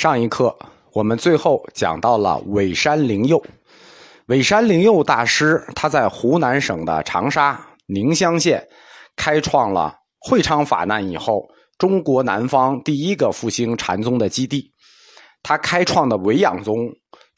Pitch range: 110-155 Hz